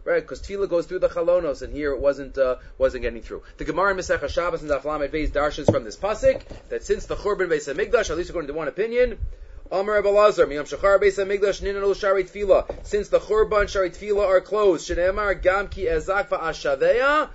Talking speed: 200 wpm